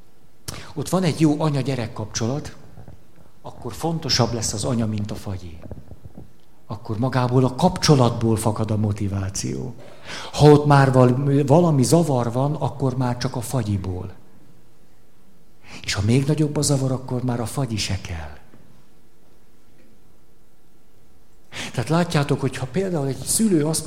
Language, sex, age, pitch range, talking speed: Hungarian, male, 60-79, 110-145 Hz, 135 wpm